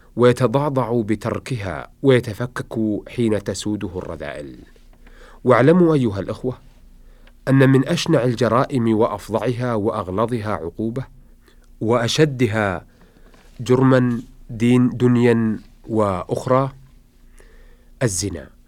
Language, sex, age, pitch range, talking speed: Arabic, male, 40-59, 100-125 Hz, 70 wpm